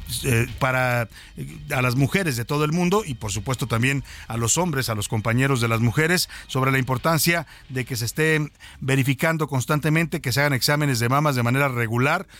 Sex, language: male, Spanish